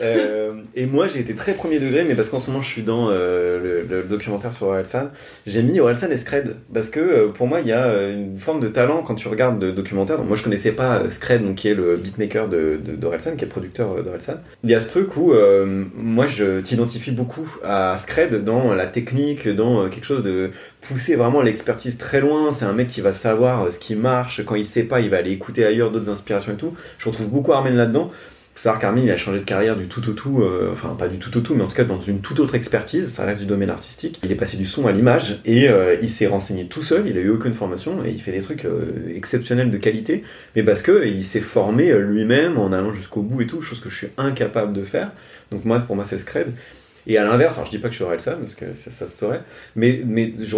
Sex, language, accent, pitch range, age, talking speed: male, French, French, 100-125 Hz, 30-49, 265 wpm